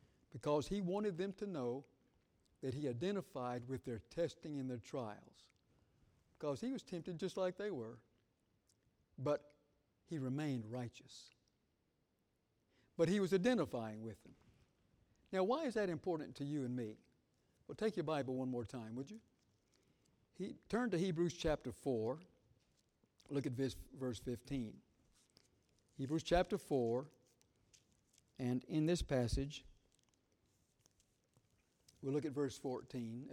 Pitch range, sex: 120-160 Hz, male